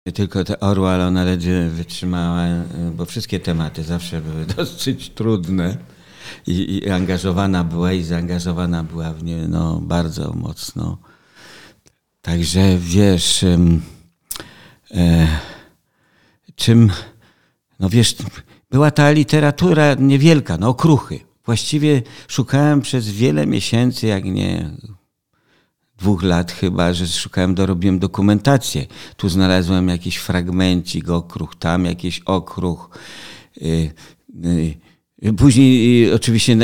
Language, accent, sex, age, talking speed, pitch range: Polish, native, male, 50-69, 100 wpm, 85-110 Hz